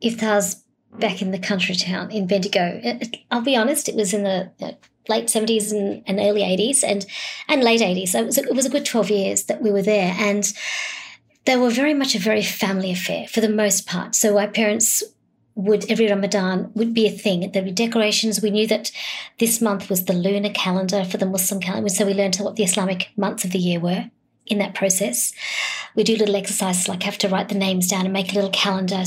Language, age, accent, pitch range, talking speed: English, 40-59, Australian, 195-225 Hz, 215 wpm